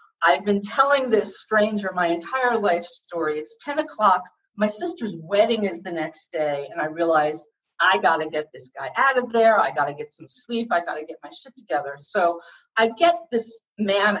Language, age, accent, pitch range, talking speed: English, 50-69, American, 165-230 Hz, 195 wpm